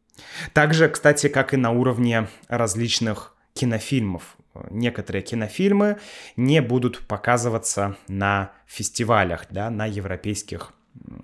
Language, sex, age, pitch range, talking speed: Russian, male, 20-39, 105-150 Hz, 95 wpm